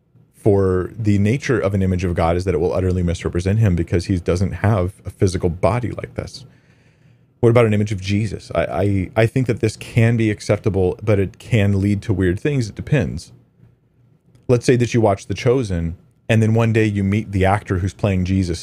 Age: 30-49